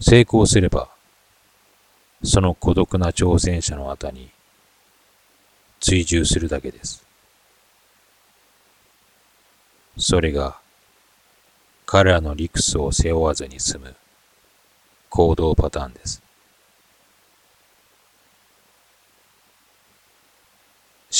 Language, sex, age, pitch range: Japanese, male, 40-59, 80-100 Hz